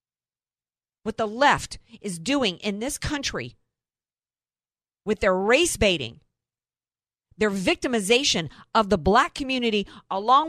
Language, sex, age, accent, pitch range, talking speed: English, female, 50-69, American, 205-305 Hz, 110 wpm